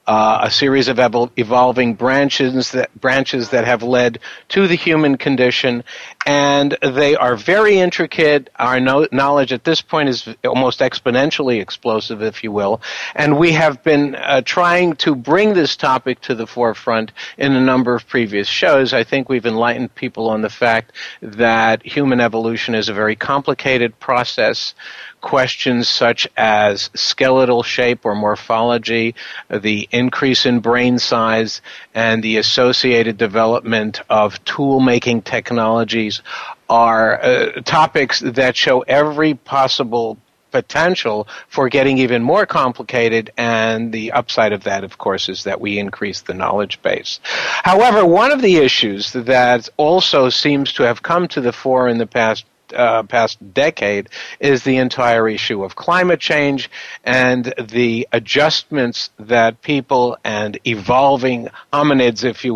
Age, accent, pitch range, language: 50-69, American, 115-135 Hz, English